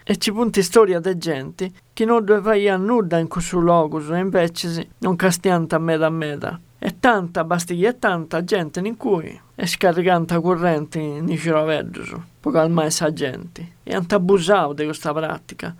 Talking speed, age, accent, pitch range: 185 wpm, 50-69, native, 160-215 Hz